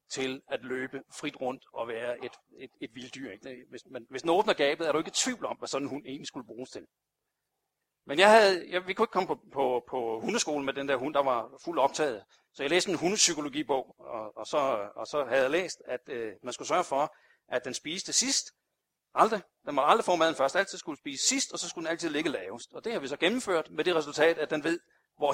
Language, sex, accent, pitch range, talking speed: Danish, male, native, 150-215 Hz, 240 wpm